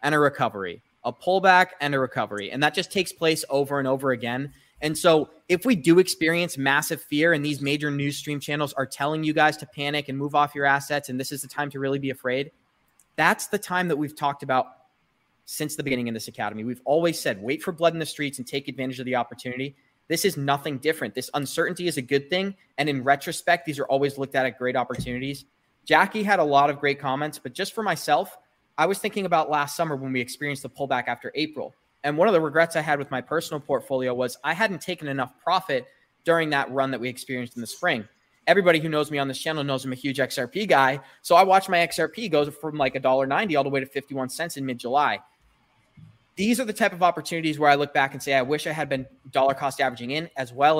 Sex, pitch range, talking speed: male, 135-160 Hz, 240 wpm